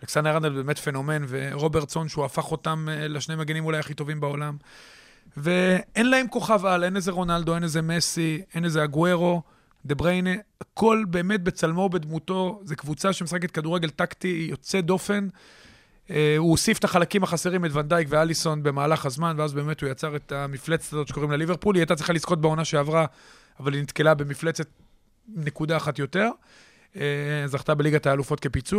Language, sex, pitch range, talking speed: Hebrew, male, 150-180 Hz, 140 wpm